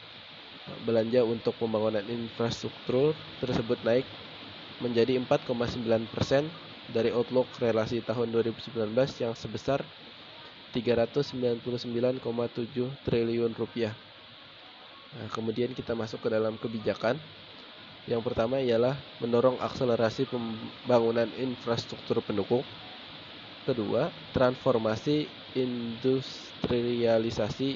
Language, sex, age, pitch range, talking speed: Indonesian, male, 20-39, 115-125 Hz, 75 wpm